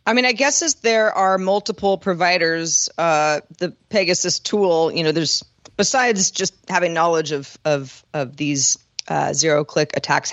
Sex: female